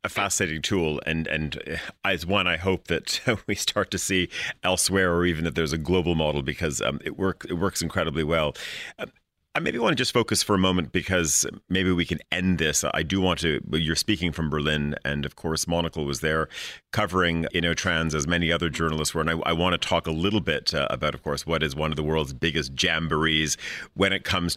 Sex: male